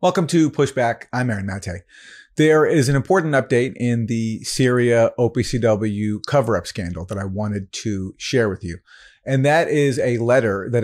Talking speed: 165 wpm